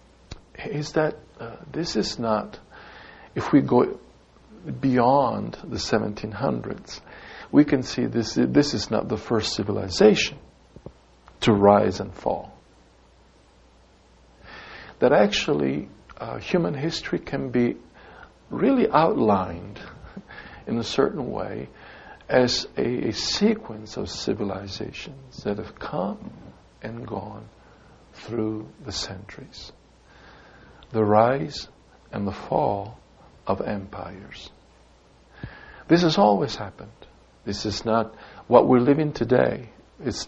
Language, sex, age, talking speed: English, male, 60-79, 105 wpm